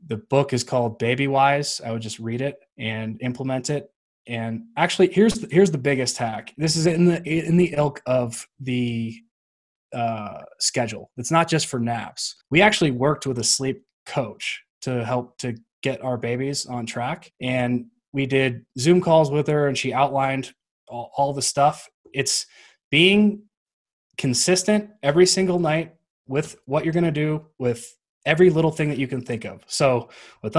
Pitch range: 120-155 Hz